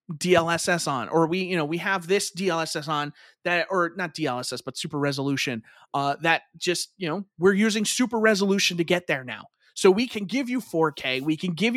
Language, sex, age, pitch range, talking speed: English, male, 30-49, 160-205 Hz, 205 wpm